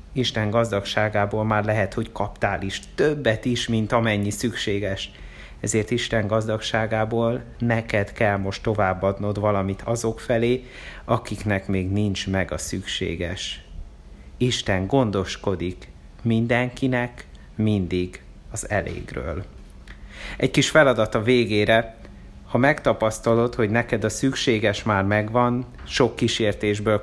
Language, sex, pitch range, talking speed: Hungarian, male, 95-115 Hz, 110 wpm